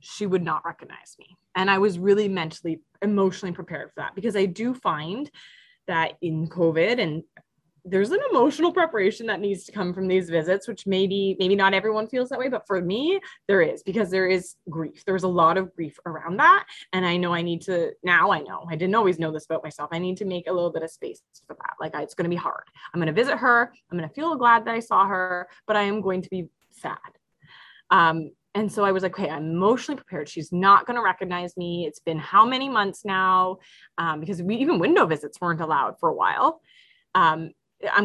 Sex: female